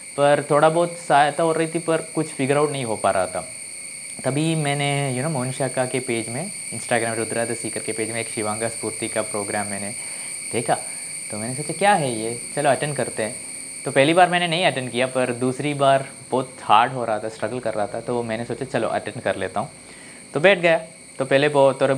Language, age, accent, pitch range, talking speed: Hindi, 20-39, native, 110-145 Hz, 230 wpm